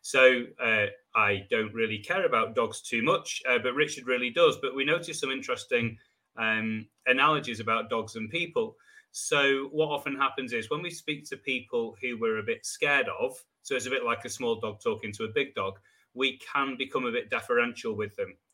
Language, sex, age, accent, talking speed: English, male, 30-49, British, 205 wpm